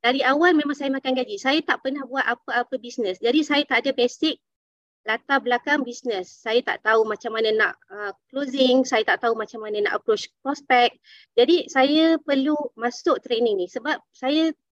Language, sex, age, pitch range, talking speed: Malay, female, 20-39, 235-300 Hz, 175 wpm